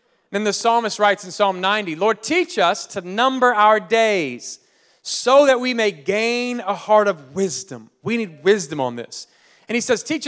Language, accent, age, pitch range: English, American, 30-49, 175-230 Hz